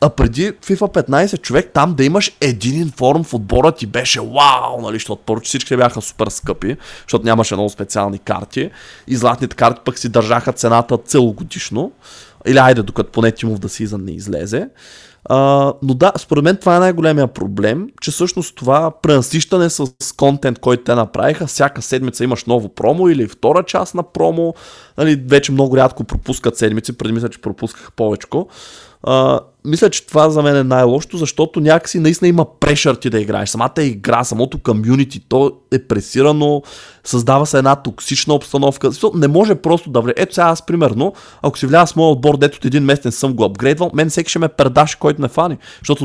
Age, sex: 20-39, male